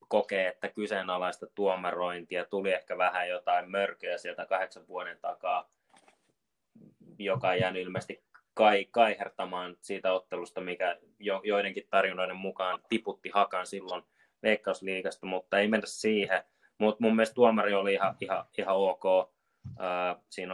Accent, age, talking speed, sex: native, 20-39, 125 wpm, male